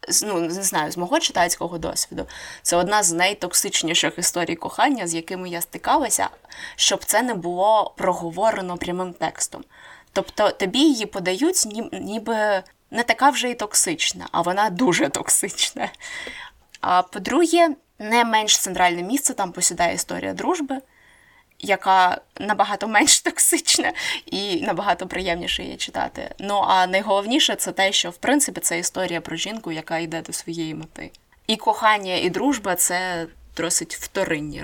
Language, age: Ukrainian, 20-39